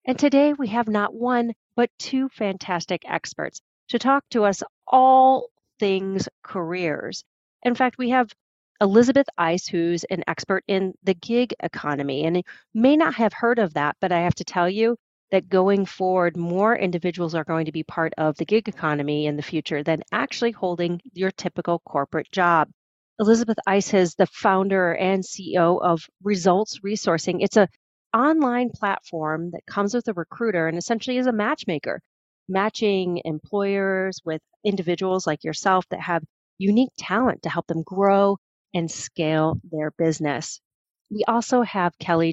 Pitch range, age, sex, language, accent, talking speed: 170-220 Hz, 40-59, female, English, American, 160 wpm